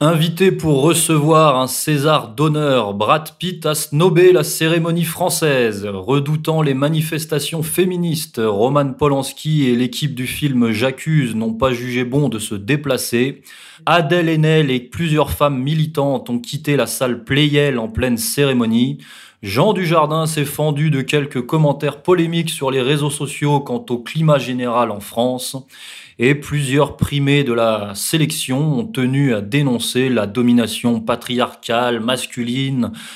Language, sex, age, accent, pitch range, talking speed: French, male, 20-39, French, 125-155 Hz, 145 wpm